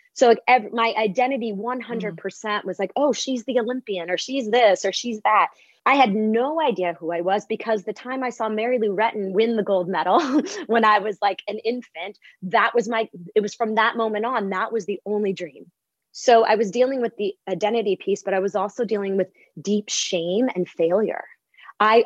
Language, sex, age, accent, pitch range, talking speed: English, female, 20-39, American, 185-225 Hz, 205 wpm